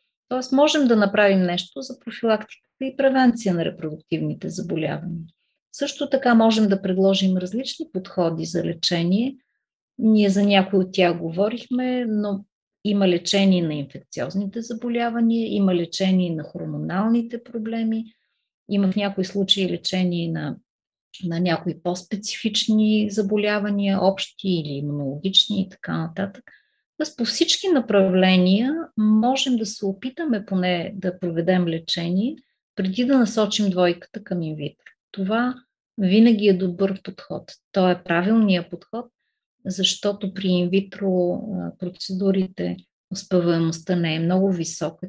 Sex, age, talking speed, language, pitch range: female, 30-49, 120 wpm, Bulgarian, 180-230 Hz